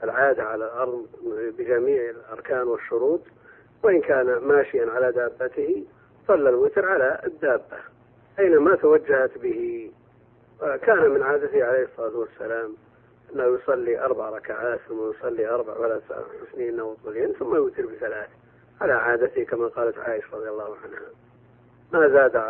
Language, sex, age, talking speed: Arabic, male, 40-59, 125 wpm